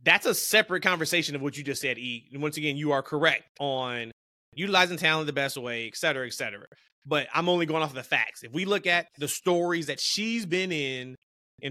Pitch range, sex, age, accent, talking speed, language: 140-180 Hz, male, 20-39, American, 220 wpm, English